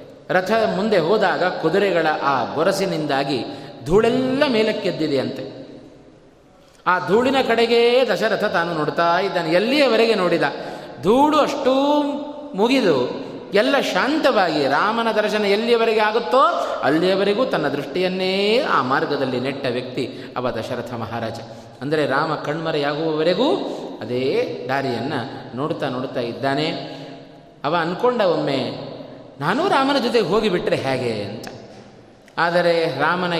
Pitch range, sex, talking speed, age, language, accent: 140-205 Hz, male, 100 wpm, 30-49, Kannada, native